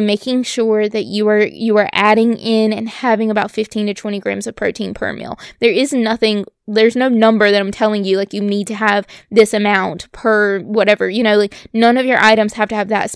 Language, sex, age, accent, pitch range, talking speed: English, female, 20-39, American, 210-235 Hz, 230 wpm